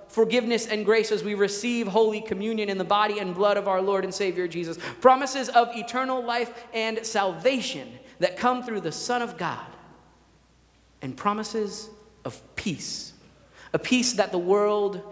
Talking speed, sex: 165 wpm, male